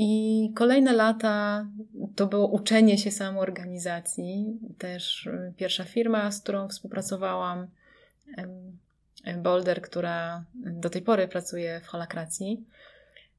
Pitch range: 185-225 Hz